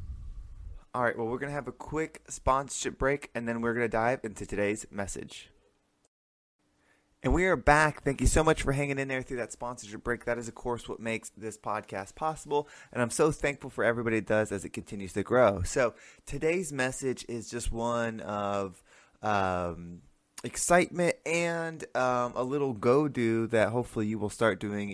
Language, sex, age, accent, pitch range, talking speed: English, male, 20-39, American, 100-125 Hz, 185 wpm